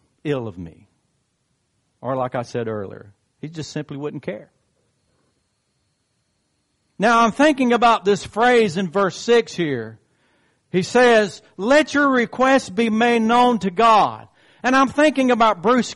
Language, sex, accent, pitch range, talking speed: English, male, American, 155-255 Hz, 145 wpm